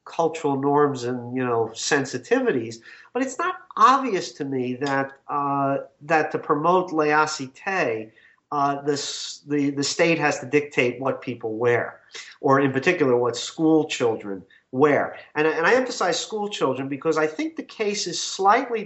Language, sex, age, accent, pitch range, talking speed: English, male, 40-59, American, 135-180 Hz, 155 wpm